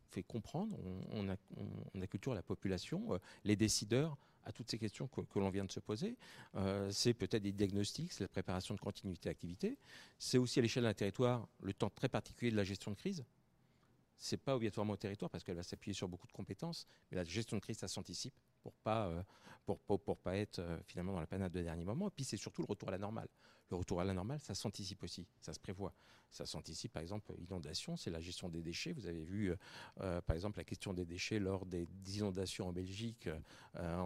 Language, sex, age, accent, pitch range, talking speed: French, male, 40-59, French, 95-120 Hz, 225 wpm